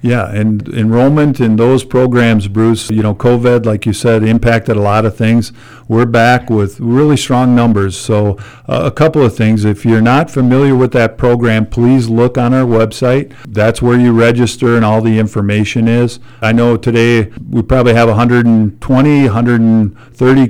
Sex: male